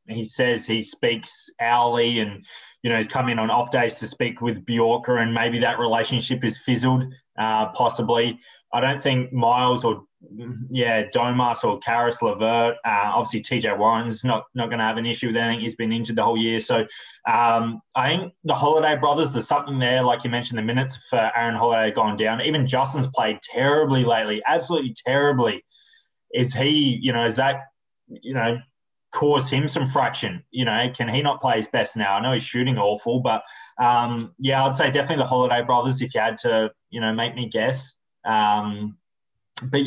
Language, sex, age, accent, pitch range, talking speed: English, male, 20-39, Australian, 115-140 Hz, 195 wpm